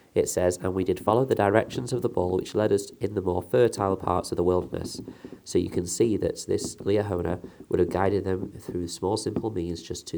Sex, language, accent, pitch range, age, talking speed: male, English, British, 85-105 Hz, 30-49, 230 wpm